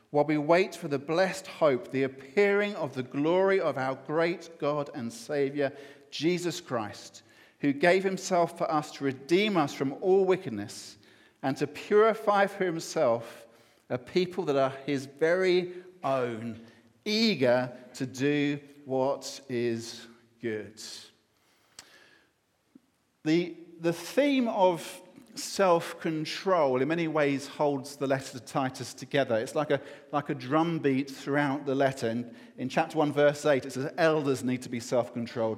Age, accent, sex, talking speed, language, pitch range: 50-69, British, male, 145 wpm, English, 130-165 Hz